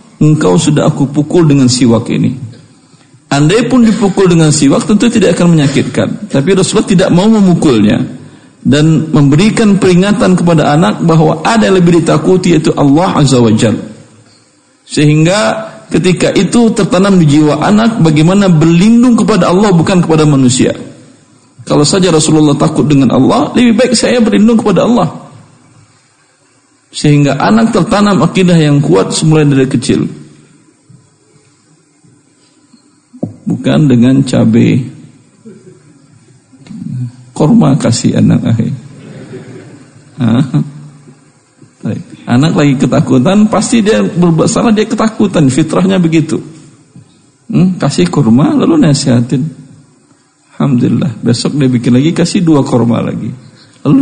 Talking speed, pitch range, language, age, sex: 110 wpm, 140-195 Hz, Indonesian, 50-69, male